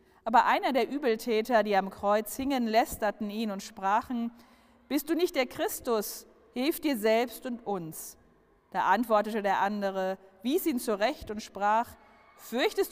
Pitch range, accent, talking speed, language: 200-245 Hz, German, 150 wpm, German